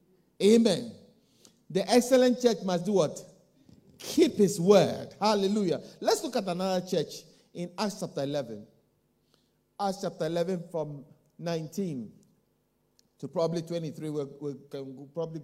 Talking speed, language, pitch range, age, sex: 120 wpm, English, 160-205 Hz, 50-69, male